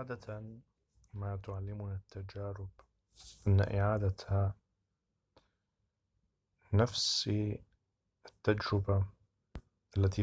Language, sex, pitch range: Arabic, male, 100-110 Hz